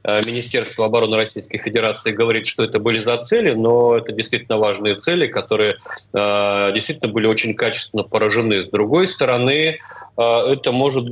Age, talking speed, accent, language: 30-49, 140 wpm, native, Russian